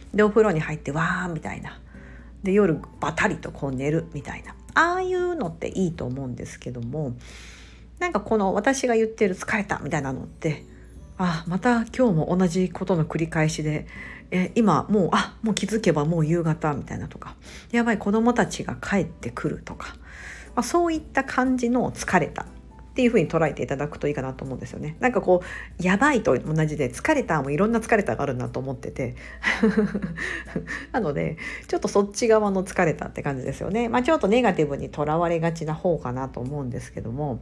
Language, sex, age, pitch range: Japanese, female, 50-69, 145-225 Hz